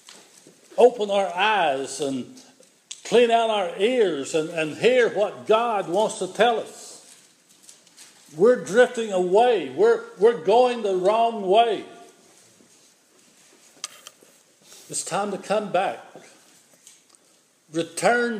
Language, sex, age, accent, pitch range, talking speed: English, male, 60-79, American, 190-240 Hz, 105 wpm